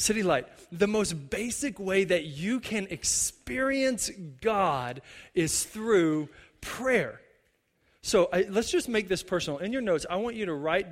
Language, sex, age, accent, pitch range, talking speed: English, male, 30-49, American, 175-230 Hz, 155 wpm